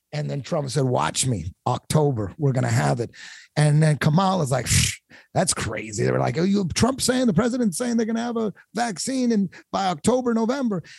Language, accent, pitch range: English, American, 135-185 Hz